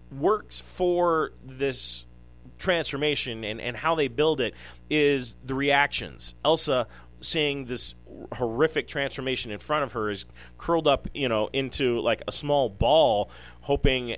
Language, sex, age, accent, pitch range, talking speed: English, male, 30-49, American, 105-145 Hz, 140 wpm